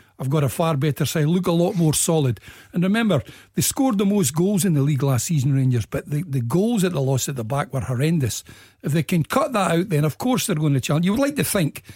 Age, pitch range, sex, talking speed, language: 60-79, 140-190 Hz, male, 270 wpm, English